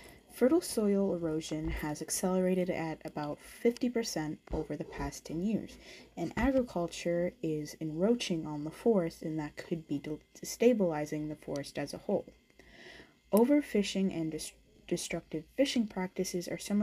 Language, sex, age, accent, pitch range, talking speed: English, female, 20-39, American, 160-205 Hz, 130 wpm